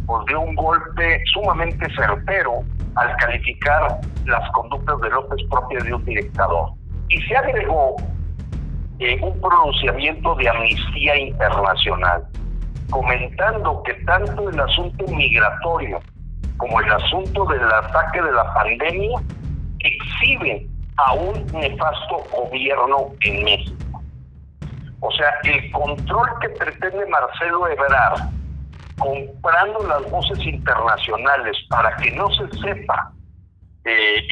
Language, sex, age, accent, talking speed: Spanish, male, 50-69, Mexican, 110 wpm